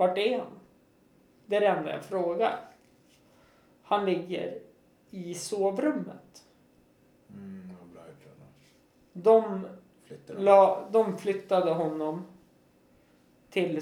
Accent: native